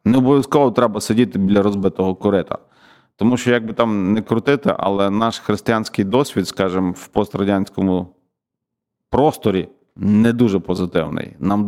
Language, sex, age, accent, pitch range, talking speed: Ukrainian, male, 40-59, native, 95-120 Hz, 135 wpm